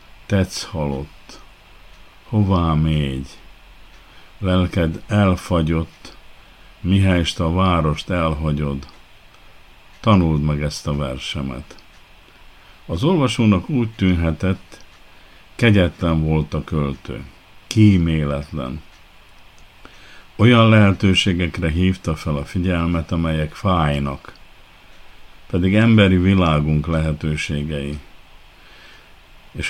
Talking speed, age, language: 75 wpm, 50-69, Hungarian